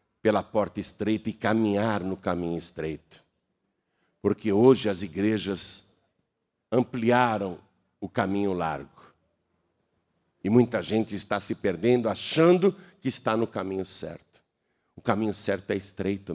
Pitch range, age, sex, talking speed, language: 90-125 Hz, 60-79, male, 120 wpm, Portuguese